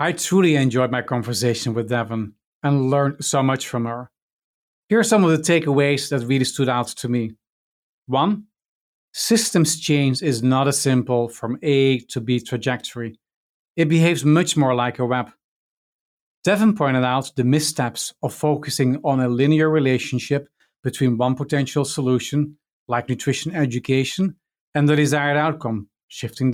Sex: male